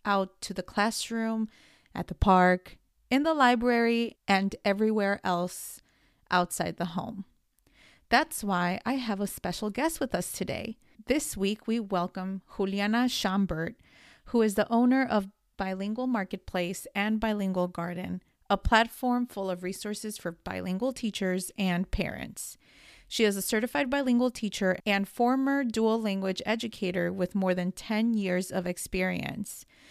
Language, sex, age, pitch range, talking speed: English, female, 30-49, 185-235 Hz, 140 wpm